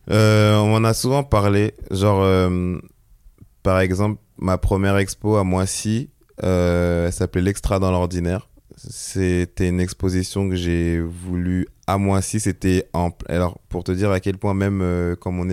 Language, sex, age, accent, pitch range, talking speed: French, male, 20-39, French, 90-105 Hz, 160 wpm